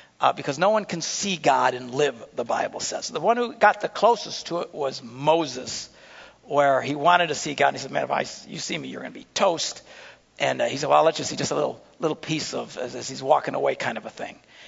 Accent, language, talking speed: American, English, 270 wpm